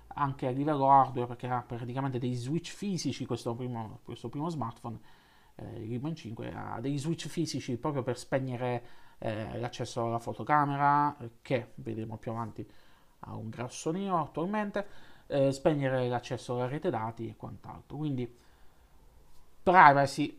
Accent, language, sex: native, Italian, male